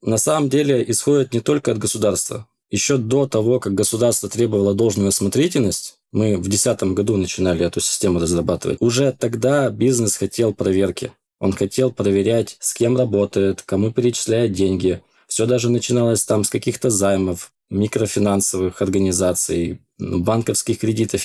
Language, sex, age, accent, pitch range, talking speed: Russian, male, 20-39, native, 100-130 Hz, 140 wpm